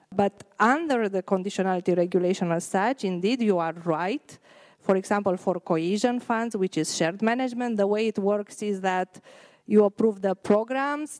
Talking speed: 160 wpm